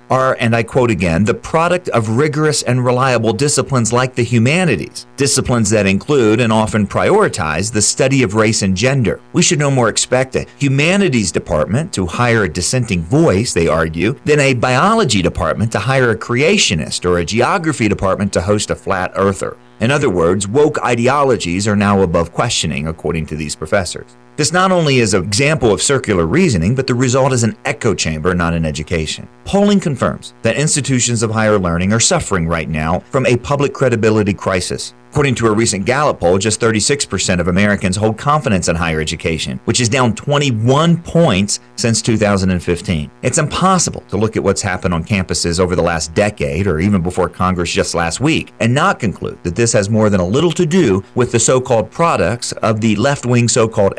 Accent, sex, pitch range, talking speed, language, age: American, male, 95-130 Hz, 190 wpm, English, 40-59